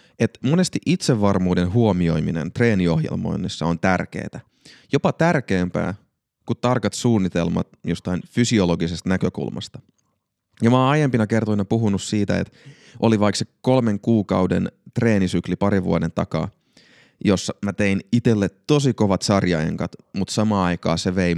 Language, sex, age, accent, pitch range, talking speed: Finnish, male, 30-49, native, 95-125 Hz, 125 wpm